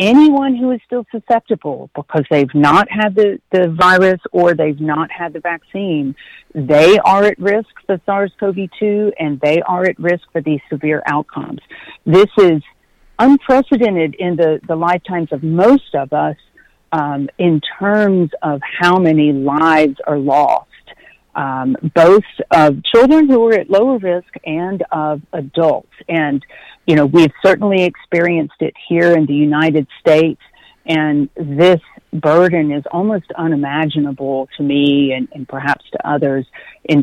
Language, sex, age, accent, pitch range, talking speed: English, female, 50-69, American, 150-195 Hz, 145 wpm